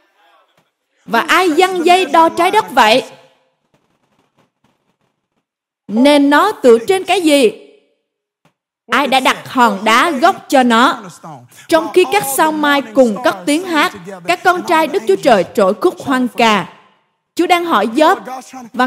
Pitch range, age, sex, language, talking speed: 240-335 Hz, 20-39, female, Vietnamese, 145 wpm